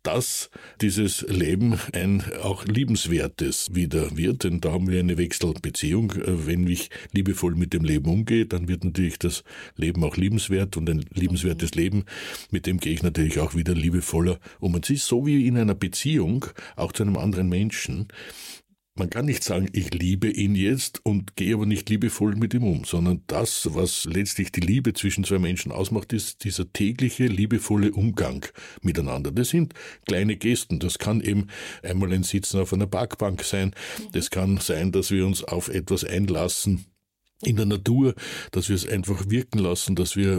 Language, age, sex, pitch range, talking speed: German, 60-79, male, 90-110 Hz, 180 wpm